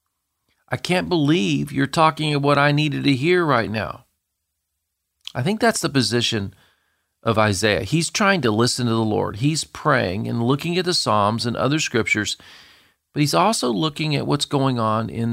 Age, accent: 40-59, American